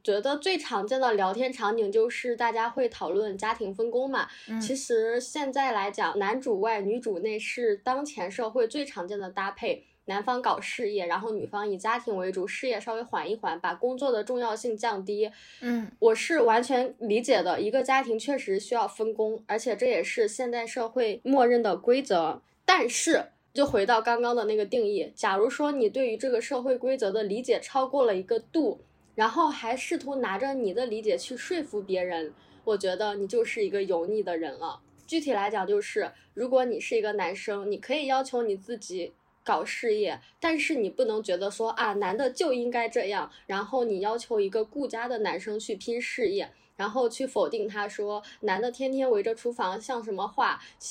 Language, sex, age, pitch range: Chinese, female, 10-29, 215-320 Hz